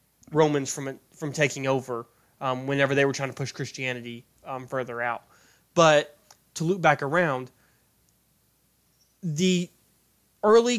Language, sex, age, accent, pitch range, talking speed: English, male, 20-39, American, 135-165 Hz, 130 wpm